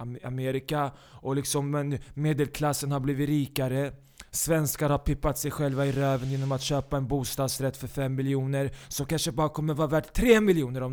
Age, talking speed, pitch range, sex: 20-39, 170 wpm, 135-155 Hz, male